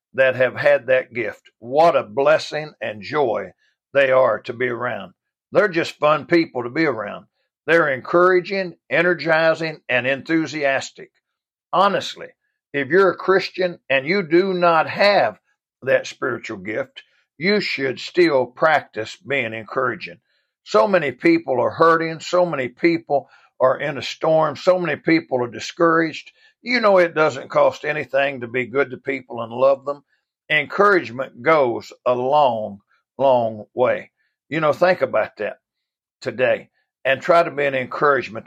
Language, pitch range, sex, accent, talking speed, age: English, 130-175 Hz, male, American, 150 wpm, 60-79